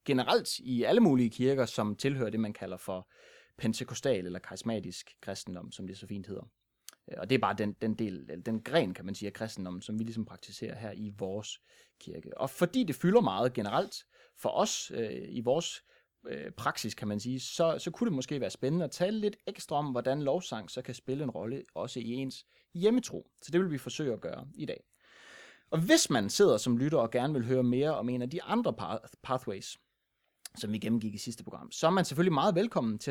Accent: native